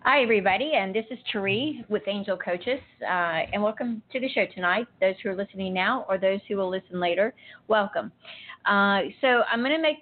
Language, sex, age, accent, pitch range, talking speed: English, female, 40-59, American, 185-220 Hz, 205 wpm